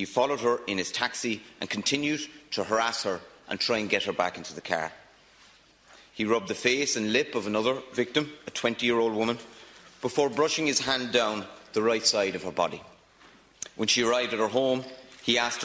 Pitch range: 105-130 Hz